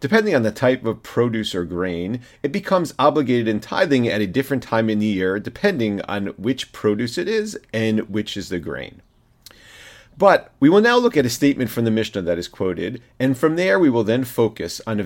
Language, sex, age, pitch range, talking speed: English, male, 40-59, 100-125 Hz, 215 wpm